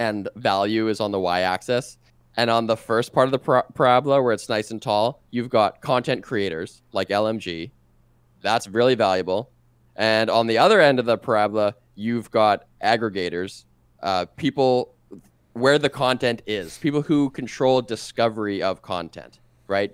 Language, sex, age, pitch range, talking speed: English, male, 20-39, 100-125 Hz, 155 wpm